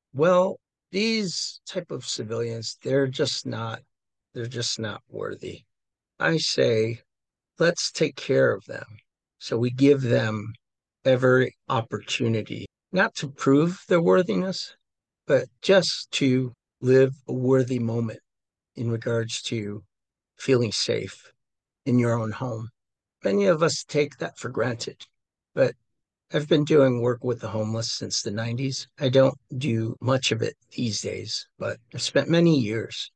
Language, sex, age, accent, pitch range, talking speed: English, male, 50-69, American, 115-140 Hz, 140 wpm